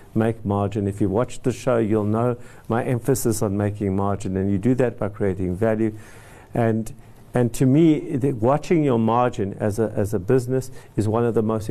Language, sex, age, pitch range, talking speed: English, male, 50-69, 105-130 Hz, 200 wpm